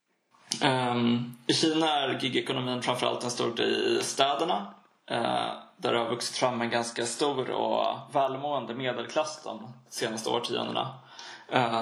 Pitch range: 115-145 Hz